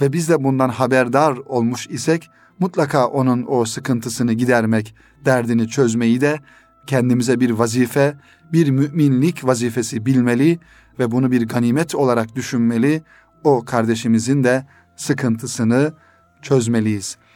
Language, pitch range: Turkish, 120-145 Hz